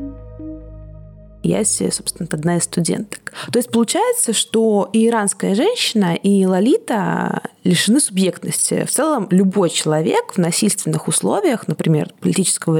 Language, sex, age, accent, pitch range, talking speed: Russian, female, 20-39, native, 175-230 Hz, 115 wpm